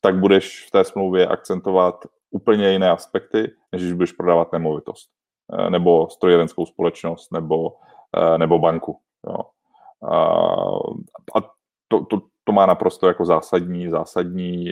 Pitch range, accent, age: 85-95 Hz, native, 30-49